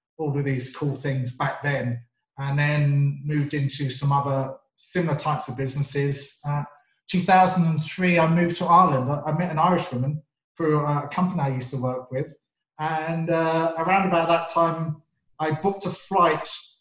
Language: English